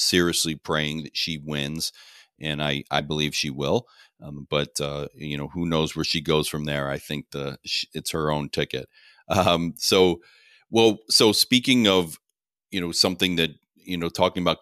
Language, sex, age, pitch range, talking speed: English, male, 40-59, 75-85 Hz, 180 wpm